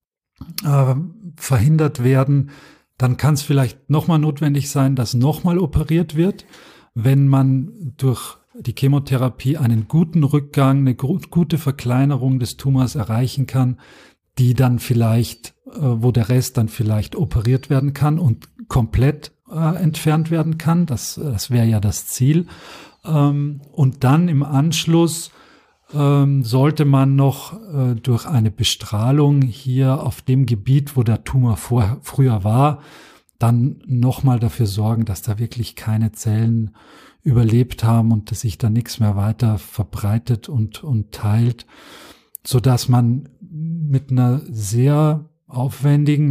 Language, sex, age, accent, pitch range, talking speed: German, male, 40-59, German, 115-145 Hz, 130 wpm